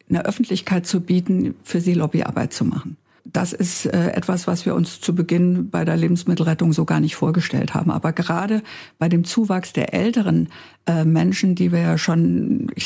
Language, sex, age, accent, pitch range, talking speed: German, female, 60-79, German, 165-205 Hz, 180 wpm